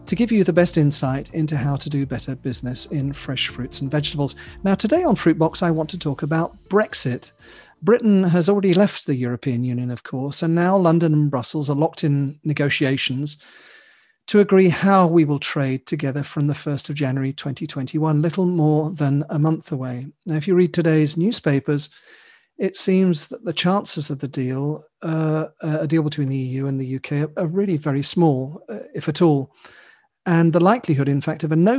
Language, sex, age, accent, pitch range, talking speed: English, male, 40-59, British, 140-175 Hz, 200 wpm